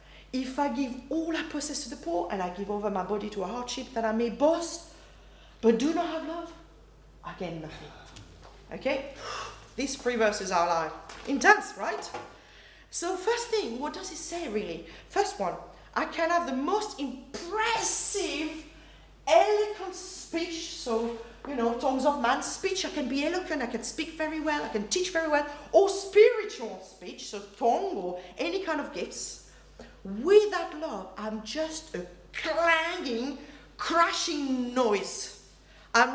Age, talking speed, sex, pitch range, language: 40-59, 160 wpm, female, 230-335 Hz, English